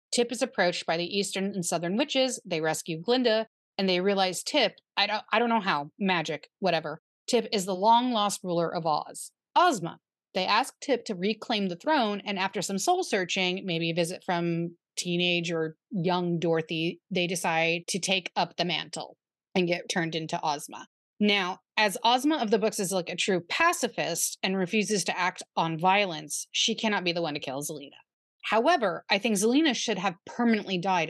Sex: female